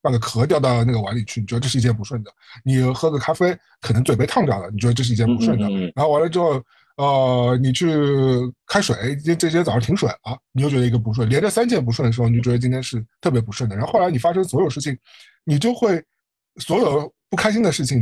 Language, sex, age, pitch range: Chinese, male, 50-69, 115-145 Hz